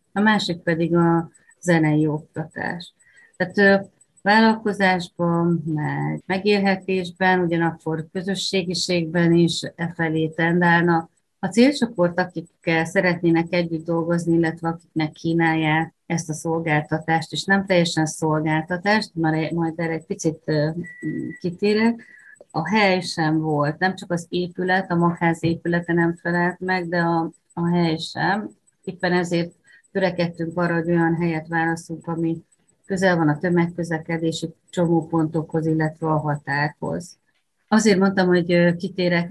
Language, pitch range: Hungarian, 160-185 Hz